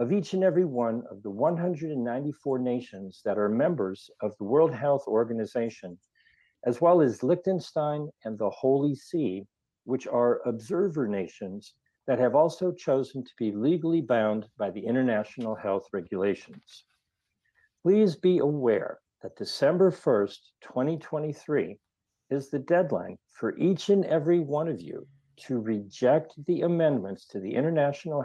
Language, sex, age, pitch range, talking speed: English, male, 60-79, 115-165 Hz, 140 wpm